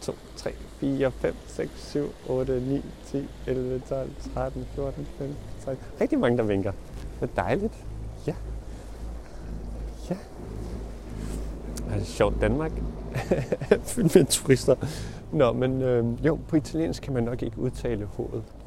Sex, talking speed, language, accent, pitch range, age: male, 140 wpm, Danish, native, 100-130 Hz, 30-49